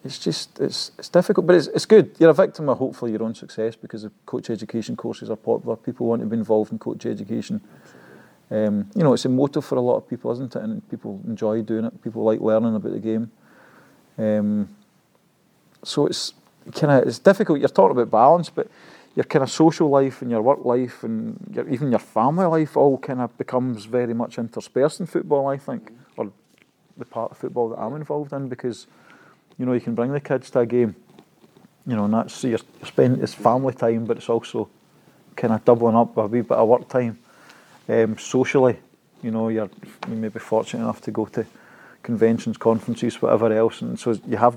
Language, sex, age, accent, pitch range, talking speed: English, male, 40-59, British, 110-140 Hz, 210 wpm